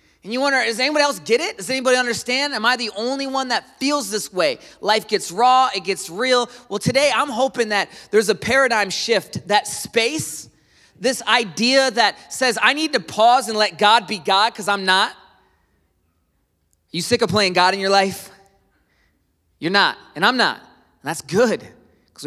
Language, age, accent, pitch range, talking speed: English, 30-49, American, 155-245 Hz, 190 wpm